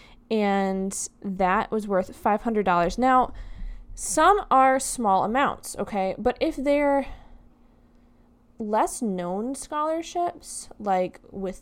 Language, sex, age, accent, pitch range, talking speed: English, female, 20-39, American, 185-260 Hz, 100 wpm